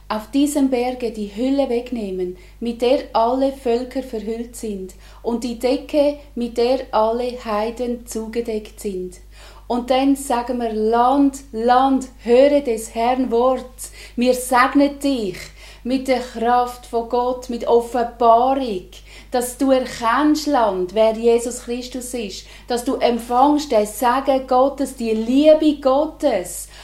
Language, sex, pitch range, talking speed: German, female, 230-265 Hz, 130 wpm